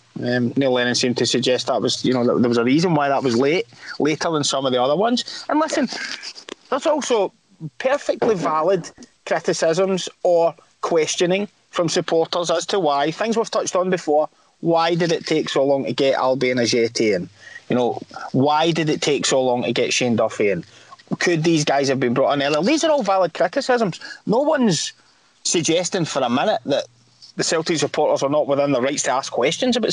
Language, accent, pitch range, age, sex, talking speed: English, British, 135-190 Hz, 20-39, male, 200 wpm